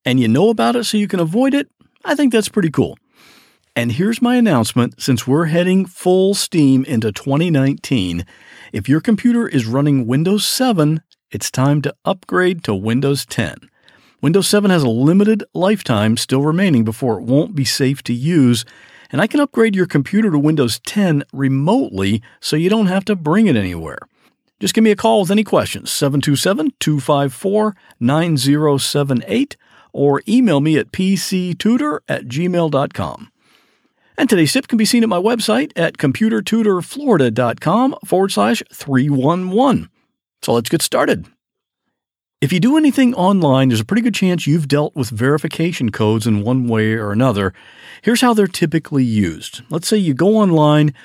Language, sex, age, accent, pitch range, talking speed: English, male, 50-69, American, 130-210 Hz, 160 wpm